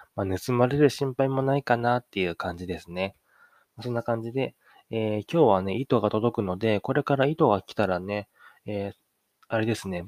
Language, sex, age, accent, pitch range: Japanese, male, 20-39, native, 100-135 Hz